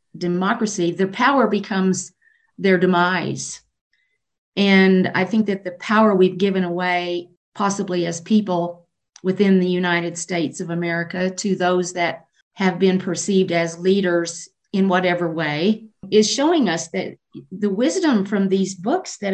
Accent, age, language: American, 50-69, English